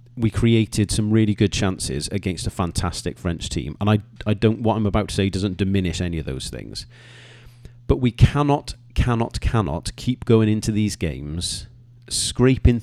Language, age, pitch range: English, 40-59, 95-120 Hz